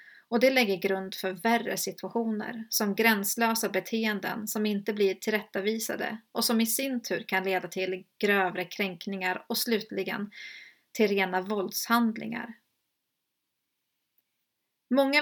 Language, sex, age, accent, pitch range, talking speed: Swedish, female, 30-49, native, 195-235 Hz, 120 wpm